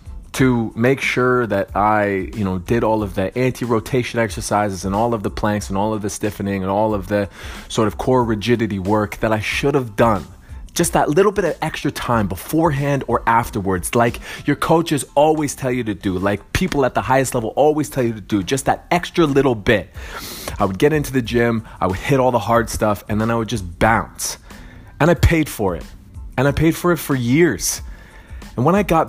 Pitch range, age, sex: 100-125 Hz, 20-39, male